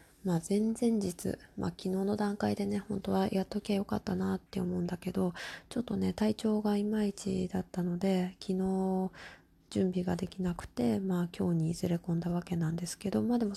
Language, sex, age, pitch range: Japanese, female, 20-39, 180-215 Hz